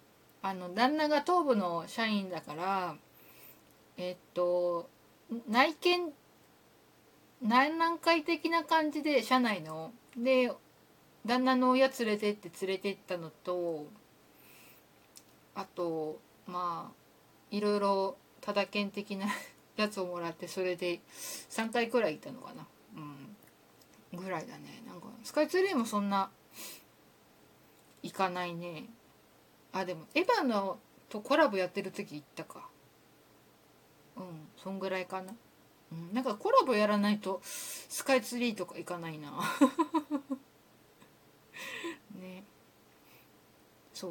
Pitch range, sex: 175-255 Hz, female